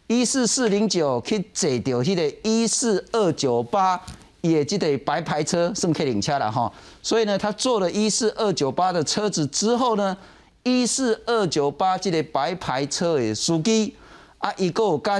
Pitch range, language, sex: 130-215 Hz, Chinese, male